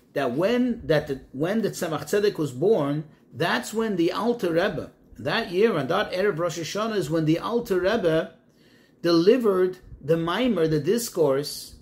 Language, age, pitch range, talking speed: English, 40-59, 155-205 Hz, 160 wpm